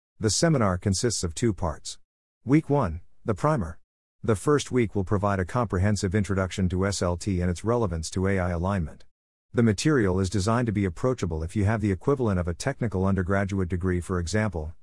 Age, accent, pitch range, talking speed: 50-69, American, 90-115 Hz, 180 wpm